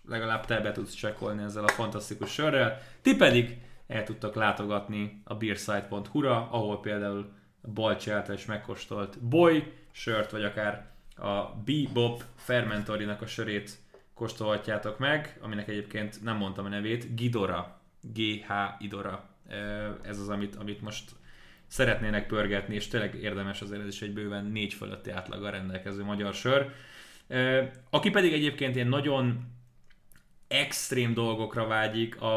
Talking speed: 130 wpm